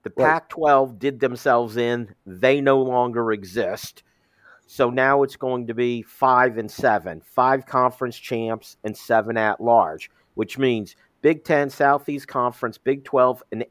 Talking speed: 155 wpm